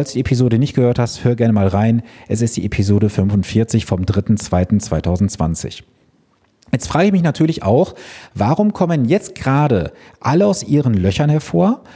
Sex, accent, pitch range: male, German, 115-160 Hz